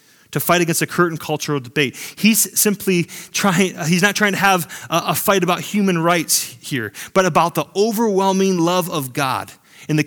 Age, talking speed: 30-49, 185 wpm